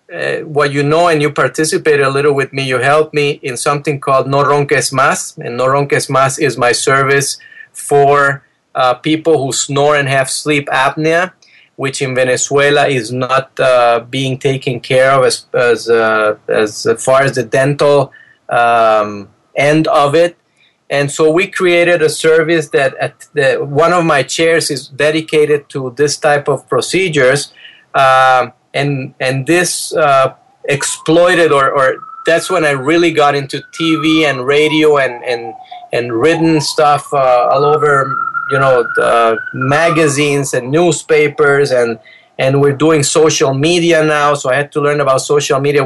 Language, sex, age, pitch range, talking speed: English, male, 30-49, 135-160 Hz, 165 wpm